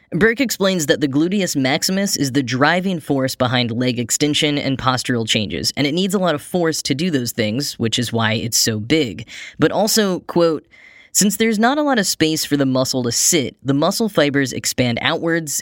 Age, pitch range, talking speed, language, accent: 10-29, 125-160 Hz, 205 wpm, English, American